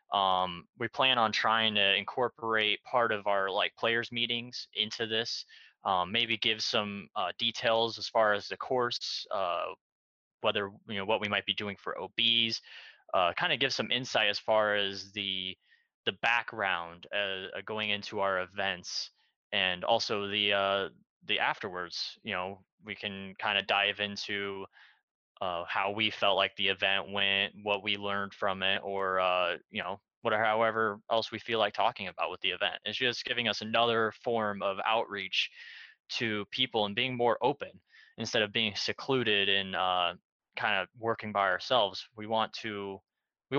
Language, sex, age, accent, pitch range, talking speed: English, male, 20-39, American, 100-115 Hz, 170 wpm